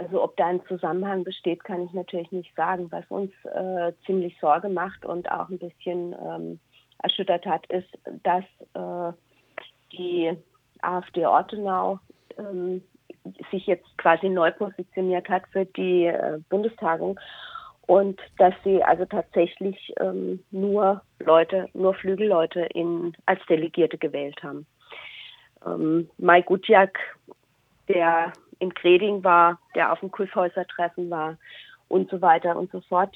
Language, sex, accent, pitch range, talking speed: German, female, German, 170-190 Hz, 135 wpm